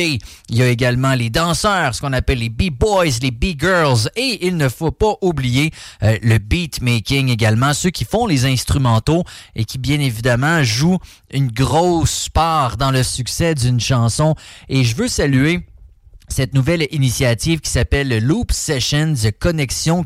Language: English